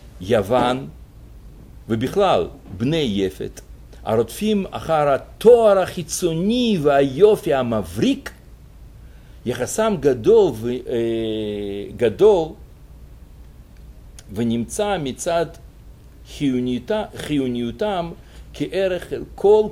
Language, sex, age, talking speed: Hebrew, male, 50-69, 60 wpm